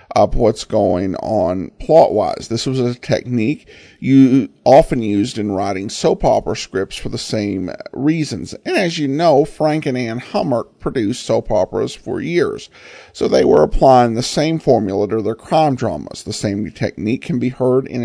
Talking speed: 175 wpm